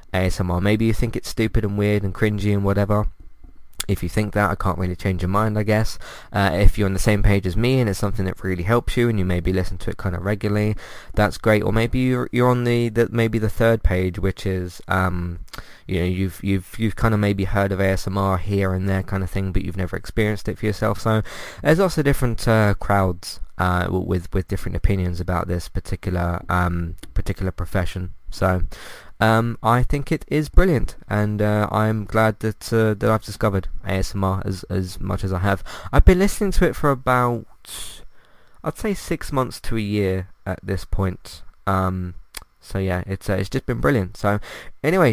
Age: 20-39